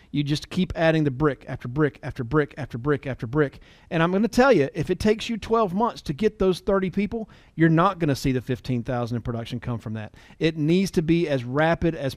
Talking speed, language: 250 wpm, English